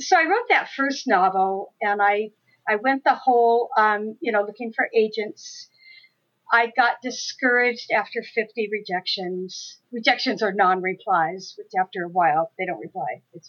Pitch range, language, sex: 200-265 Hz, English, female